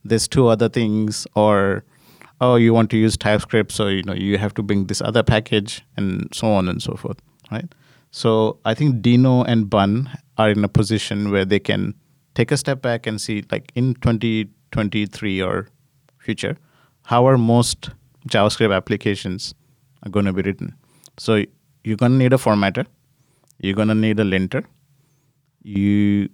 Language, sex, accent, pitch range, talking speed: English, male, Indian, 105-130 Hz, 175 wpm